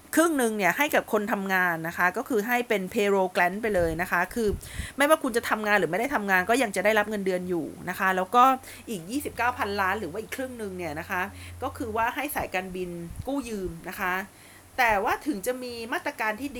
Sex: female